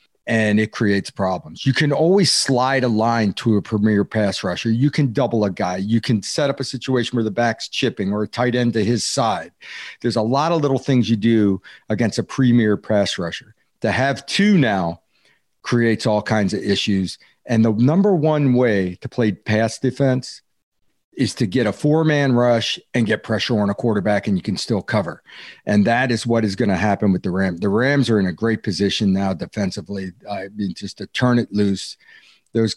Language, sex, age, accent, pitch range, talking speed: English, male, 40-59, American, 100-125 Hz, 205 wpm